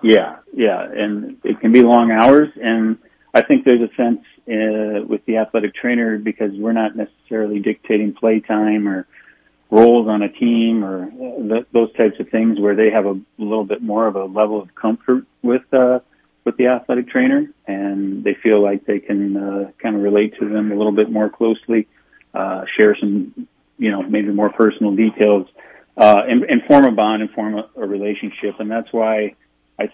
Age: 40-59